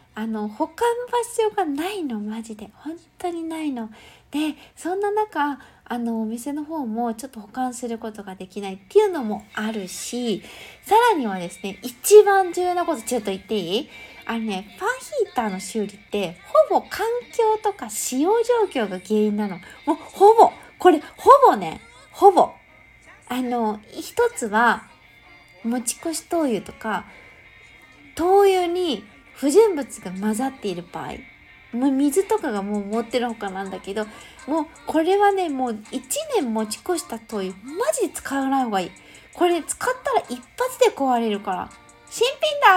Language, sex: Japanese, female